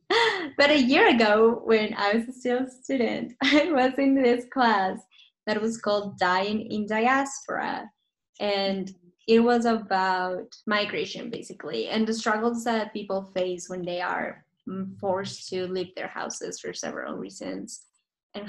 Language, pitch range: English, 190-225 Hz